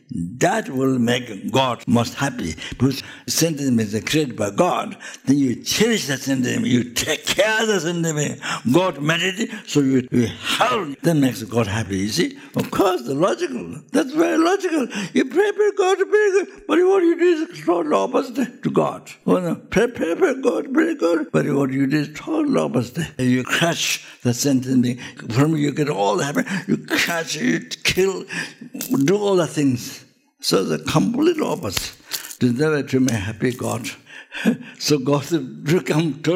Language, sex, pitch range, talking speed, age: English, male, 115-170 Hz, 165 wpm, 60-79